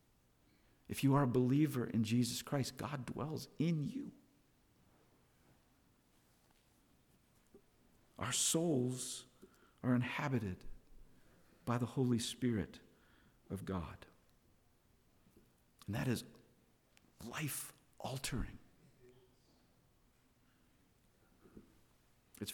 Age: 50-69